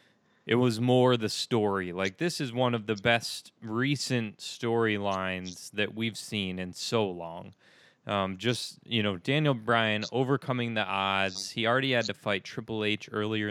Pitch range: 105-125 Hz